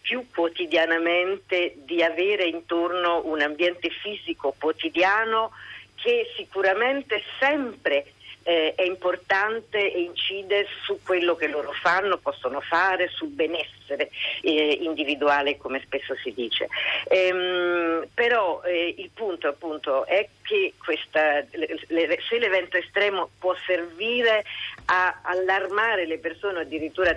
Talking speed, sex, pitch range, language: 120 wpm, female, 165-220 Hz, Italian